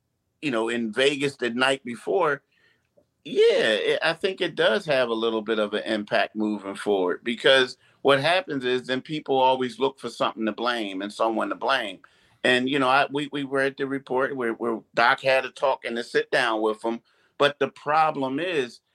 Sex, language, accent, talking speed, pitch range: male, English, American, 200 wpm, 110-145 Hz